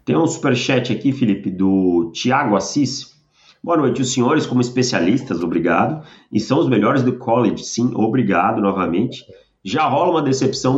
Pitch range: 105-130 Hz